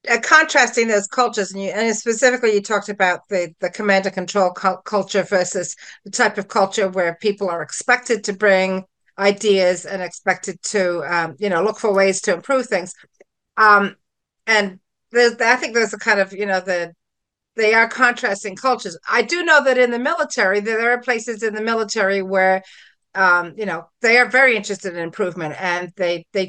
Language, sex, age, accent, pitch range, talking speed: English, female, 50-69, American, 185-245 Hz, 190 wpm